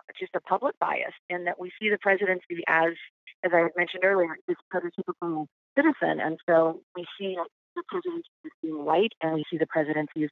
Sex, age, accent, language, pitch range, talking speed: female, 40-59, American, English, 155-185 Hz, 190 wpm